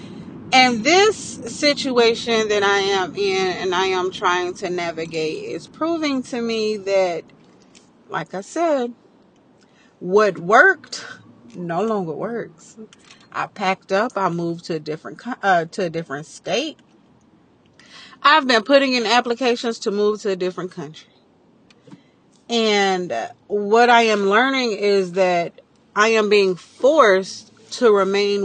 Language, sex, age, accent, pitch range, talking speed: English, female, 40-59, American, 190-235 Hz, 135 wpm